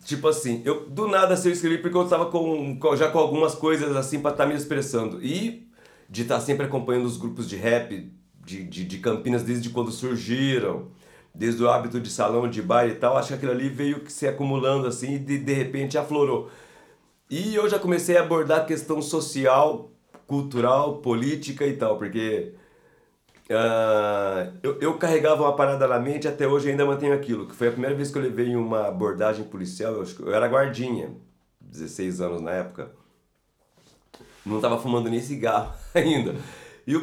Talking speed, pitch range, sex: 195 wpm, 110-150 Hz, male